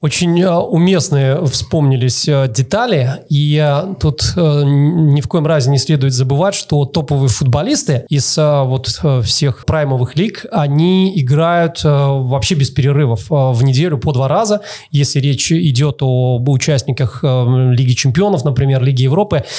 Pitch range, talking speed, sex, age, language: 135-170 Hz, 125 wpm, male, 30-49, Russian